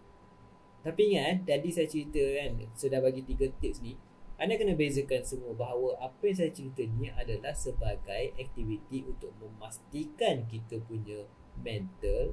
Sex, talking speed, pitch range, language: male, 140 wpm, 120-165 Hz, Malay